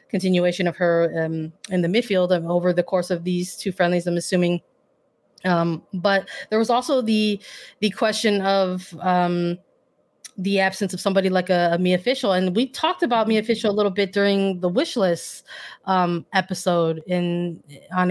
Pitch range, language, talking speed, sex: 175-195 Hz, English, 170 wpm, female